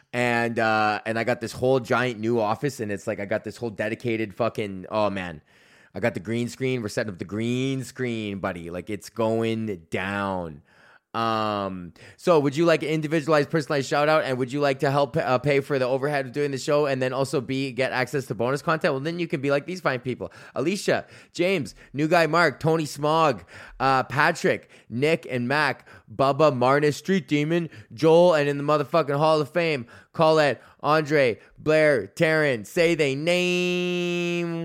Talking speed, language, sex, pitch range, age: 195 wpm, English, male, 115-155 Hz, 20-39